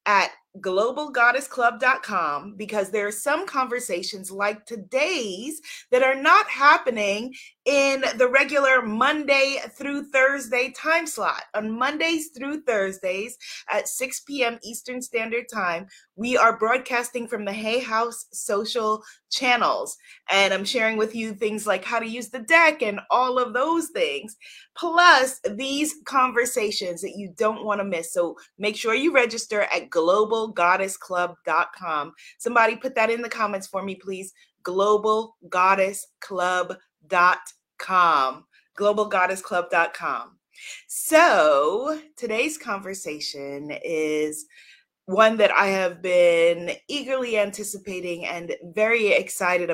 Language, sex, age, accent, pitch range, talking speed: English, female, 30-49, American, 190-265 Hz, 120 wpm